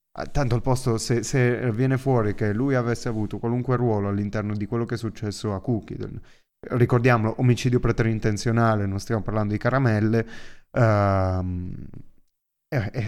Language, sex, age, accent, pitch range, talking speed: Italian, male, 30-49, native, 100-115 Hz, 145 wpm